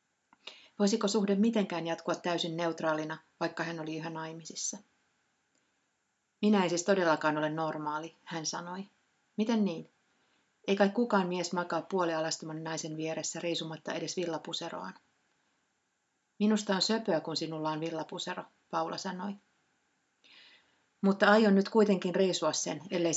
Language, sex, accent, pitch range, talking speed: Finnish, female, native, 165-200 Hz, 125 wpm